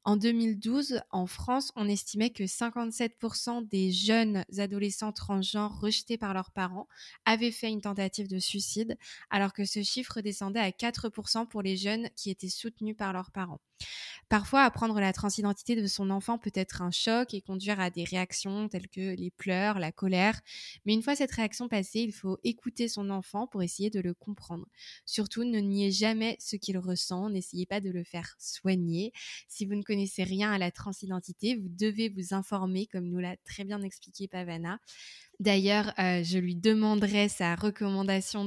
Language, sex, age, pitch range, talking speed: French, female, 20-39, 190-220 Hz, 180 wpm